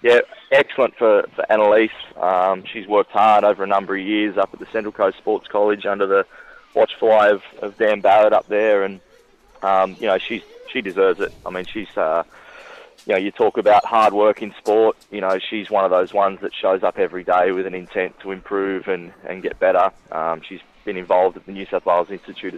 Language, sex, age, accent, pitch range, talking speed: English, male, 20-39, Australian, 95-110 Hz, 220 wpm